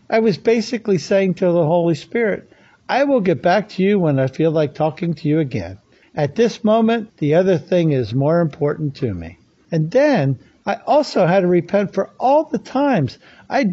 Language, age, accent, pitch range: English, 60-79, American, 155-225 Hz